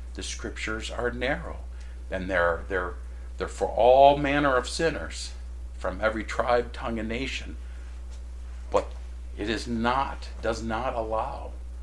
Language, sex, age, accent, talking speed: English, male, 50-69, American, 130 wpm